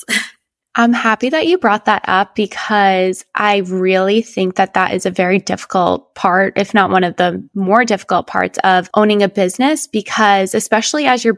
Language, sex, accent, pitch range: English, female, American, 185-225 Hz